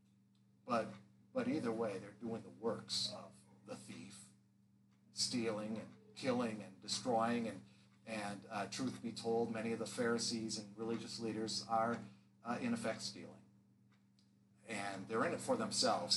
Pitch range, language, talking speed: 100-130 Hz, English, 150 wpm